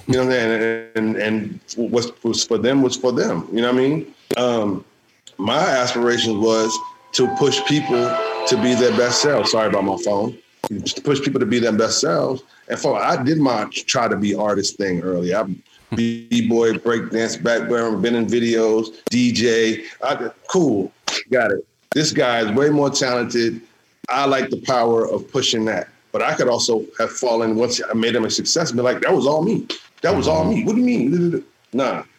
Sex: male